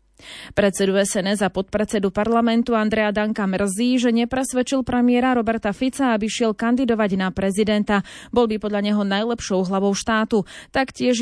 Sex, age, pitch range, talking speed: female, 30-49, 200-240 Hz, 140 wpm